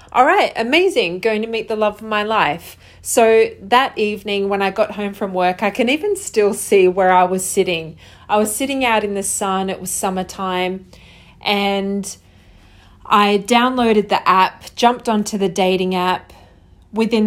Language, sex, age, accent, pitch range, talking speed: English, female, 30-49, Australian, 180-220 Hz, 175 wpm